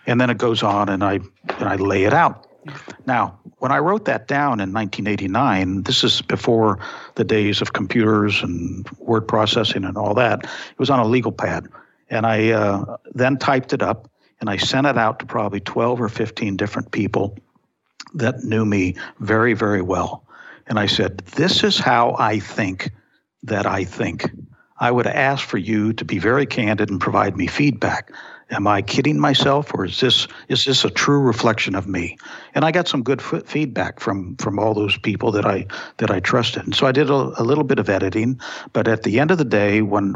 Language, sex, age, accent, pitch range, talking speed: English, male, 60-79, American, 100-130 Hz, 205 wpm